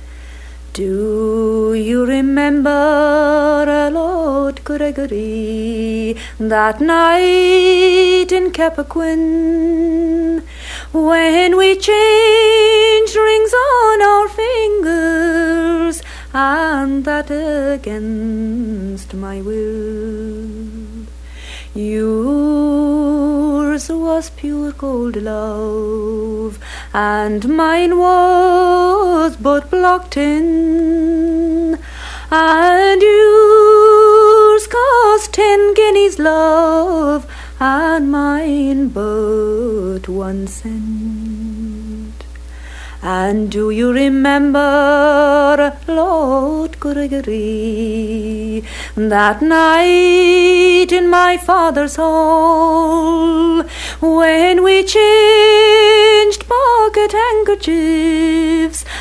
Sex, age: female, 30-49